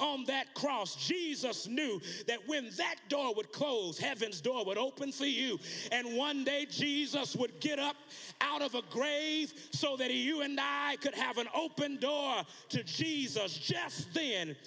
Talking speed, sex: 170 wpm, male